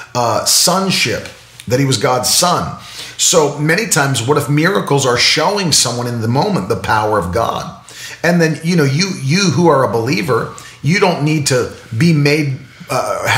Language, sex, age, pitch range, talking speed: English, male, 40-59, 115-145 Hz, 180 wpm